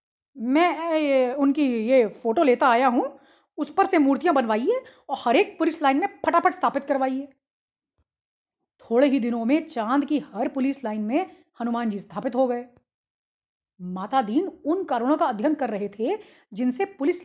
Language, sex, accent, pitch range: English, female, Indian, 240-315 Hz